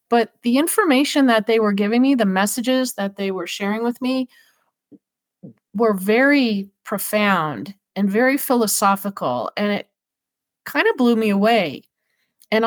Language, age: English, 40-59